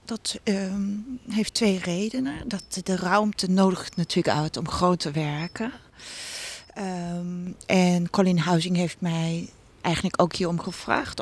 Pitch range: 175-195 Hz